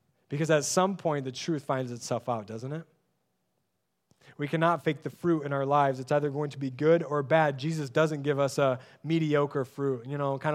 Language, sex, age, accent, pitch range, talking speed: English, male, 20-39, American, 135-180 Hz, 210 wpm